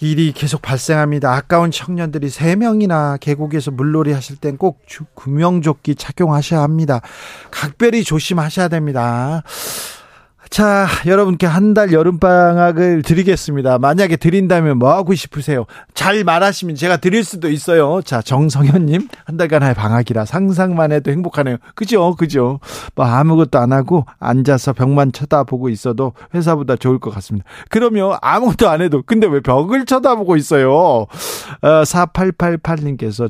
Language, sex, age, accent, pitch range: Korean, male, 40-59, native, 130-175 Hz